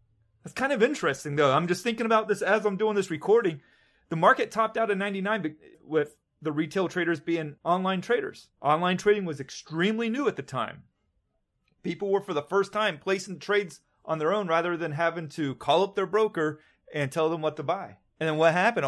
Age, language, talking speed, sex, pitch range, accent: 30-49, English, 205 wpm, male, 145-200 Hz, American